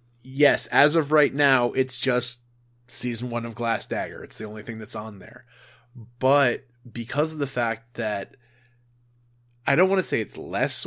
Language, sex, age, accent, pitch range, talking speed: English, male, 20-39, American, 120-135 Hz, 175 wpm